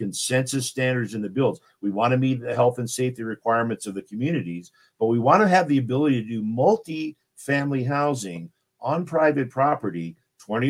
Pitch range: 110-140 Hz